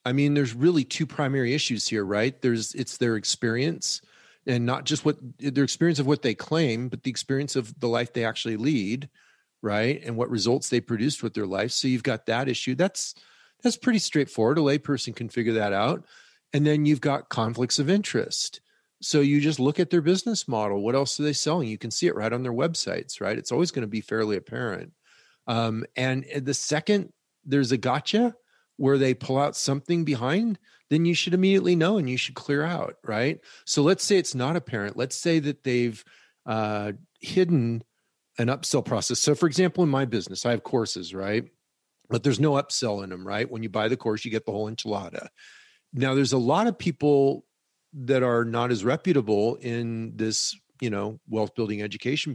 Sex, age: male, 40-59